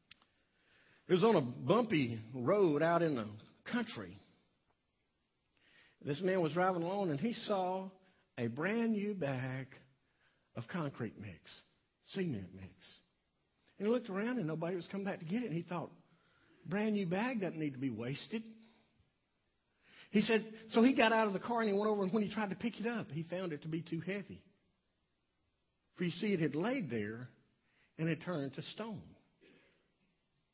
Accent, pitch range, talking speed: American, 150-220 Hz, 175 wpm